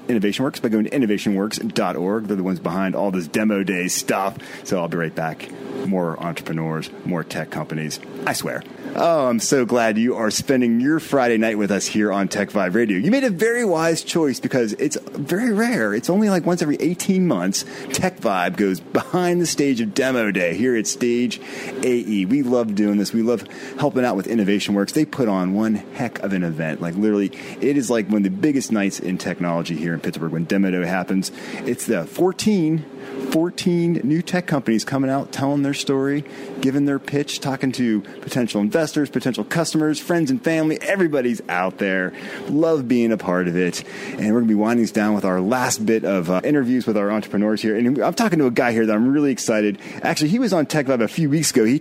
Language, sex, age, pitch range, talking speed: English, male, 30-49, 100-145 Hz, 210 wpm